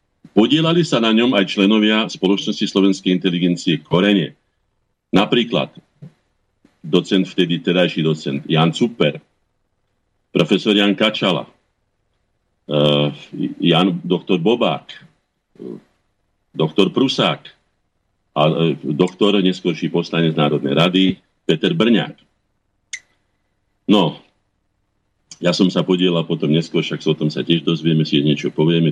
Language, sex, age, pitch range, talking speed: Slovak, male, 50-69, 80-100 Hz, 110 wpm